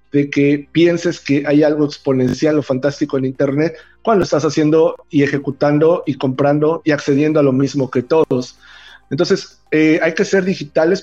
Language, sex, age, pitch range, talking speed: Spanish, male, 40-59, 140-160 Hz, 175 wpm